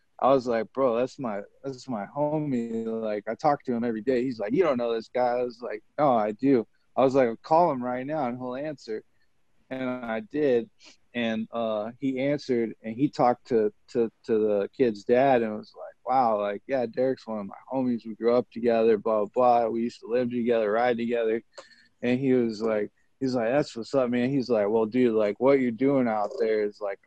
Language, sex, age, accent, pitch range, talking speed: English, male, 20-39, American, 110-130 Hz, 225 wpm